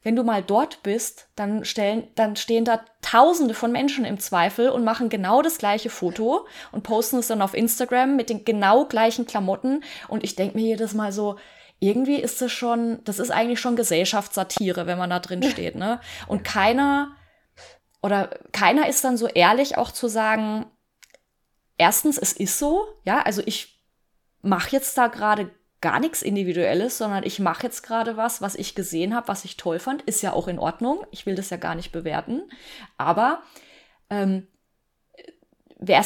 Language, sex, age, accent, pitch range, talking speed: German, female, 20-39, German, 195-245 Hz, 180 wpm